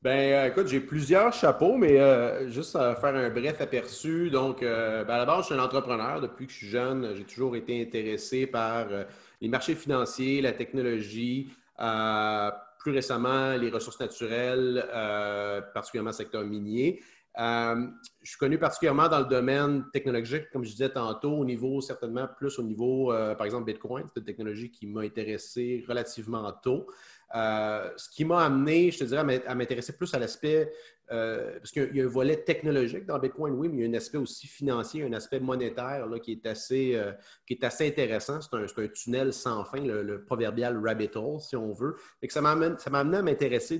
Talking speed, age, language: 200 wpm, 30-49, French